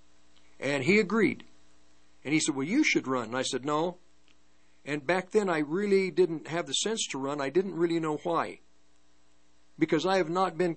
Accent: American